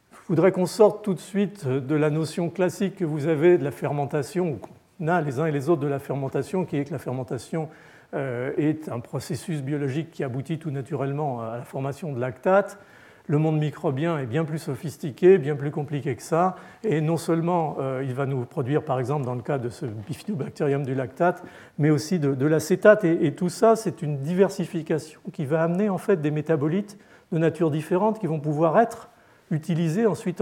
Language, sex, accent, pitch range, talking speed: French, male, French, 145-180 Hz, 195 wpm